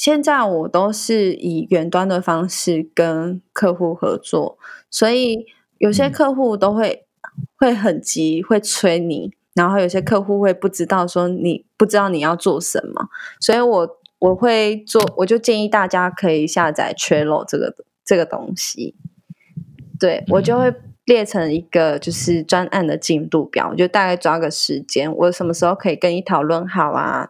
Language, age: Chinese, 20-39